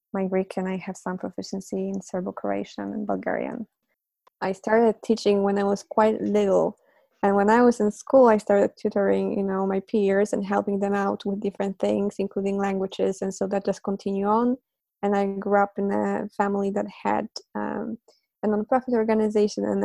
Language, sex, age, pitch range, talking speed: English, female, 20-39, 200-225 Hz, 185 wpm